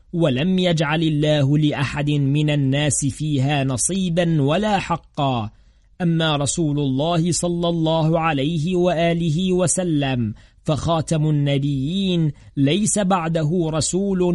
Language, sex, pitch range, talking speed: Arabic, male, 145-175 Hz, 95 wpm